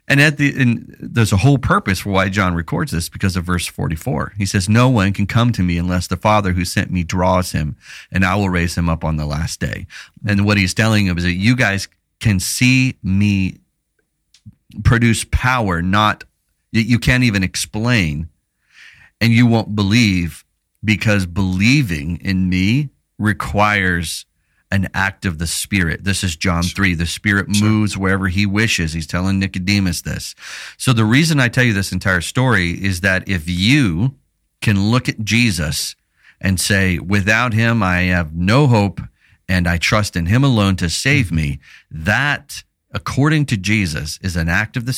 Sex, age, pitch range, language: male, 40-59, 90-115 Hz, English